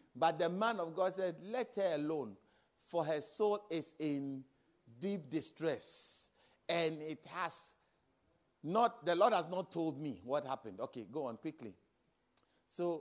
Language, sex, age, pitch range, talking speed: English, male, 50-69, 130-175 Hz, 150 wpm